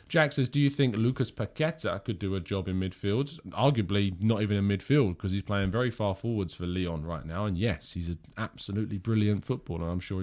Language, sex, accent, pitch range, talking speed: English, male, British, 95-125 Hz, 215 wpm